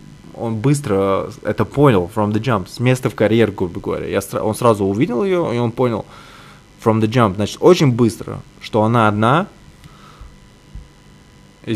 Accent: native